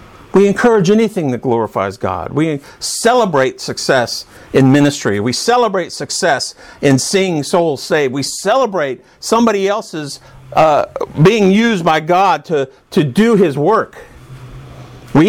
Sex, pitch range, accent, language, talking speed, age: male, 130-205 Hz, American, English, 130 wpm, 50-69